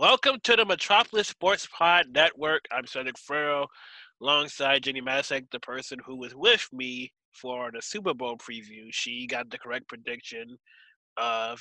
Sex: male